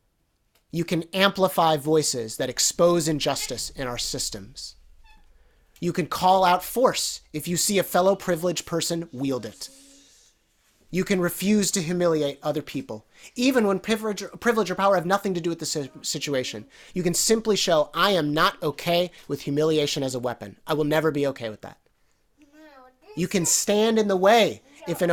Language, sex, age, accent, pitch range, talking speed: English, male, 30-49, American, 135-185 Hz, 170 wpm